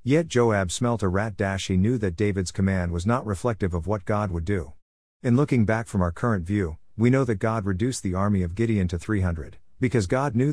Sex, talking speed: male, 220 wpm